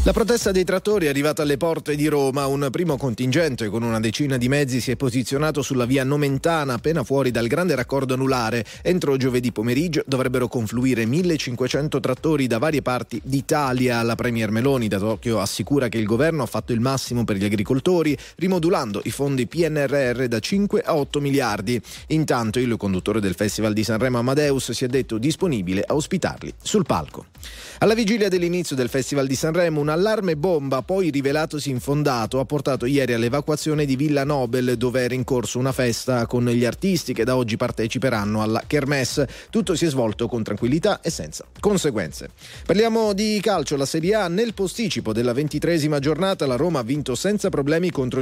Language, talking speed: Italian, 180 wpm